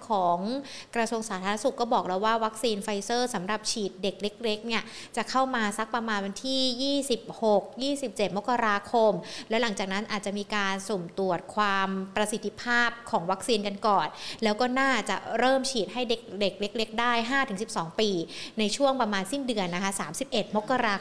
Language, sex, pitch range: Thai, female, 200-260 Hz